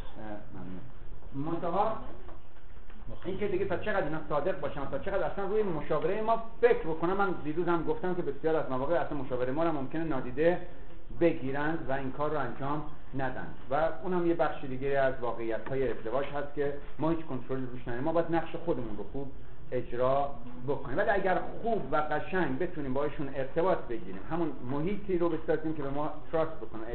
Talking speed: 175 wpm